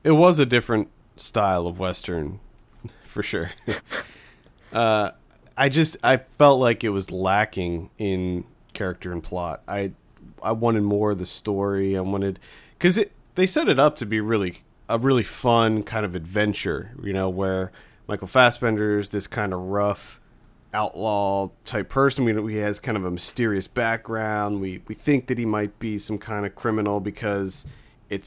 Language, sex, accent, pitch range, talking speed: English, male, American, 100-120 Hz, 170 wpm